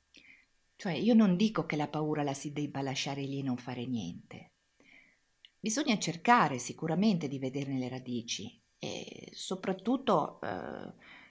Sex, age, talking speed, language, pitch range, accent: female, 50-69, 140 wpm, Italian, 145-220 Hz, native